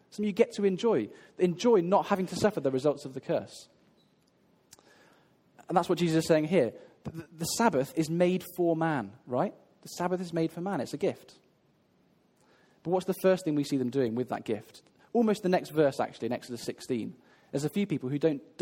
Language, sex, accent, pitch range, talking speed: English, male, British, 145-185 Hz, 205 wpm